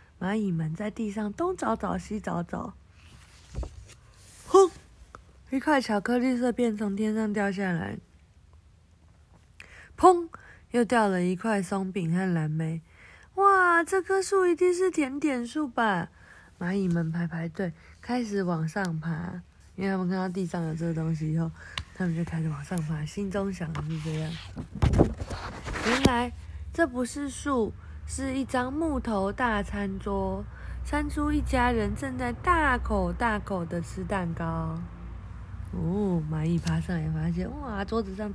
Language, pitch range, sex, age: Chinese, 160-245 Hz, female, 20-39